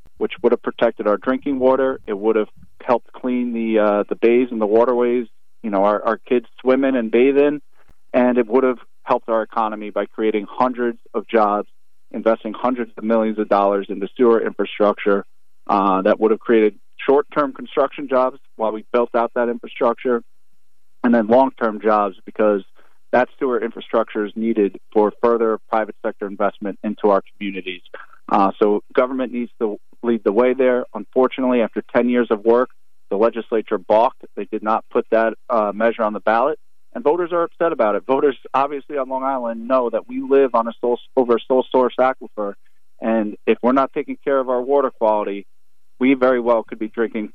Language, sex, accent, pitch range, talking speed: English, male, American, 105-125 Hz, 190 wpm